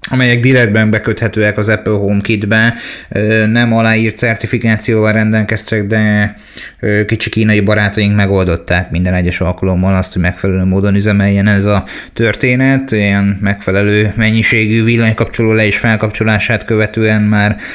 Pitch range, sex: 105-115 Hz, male